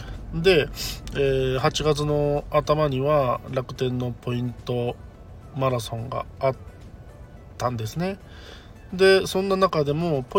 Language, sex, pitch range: Japanese, male, 120-160 Hz